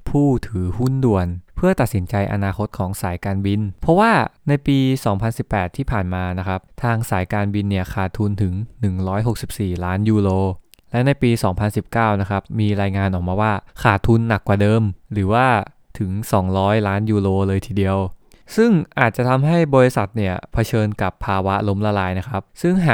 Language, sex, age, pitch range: English, male, 20-39, 100-130 Hz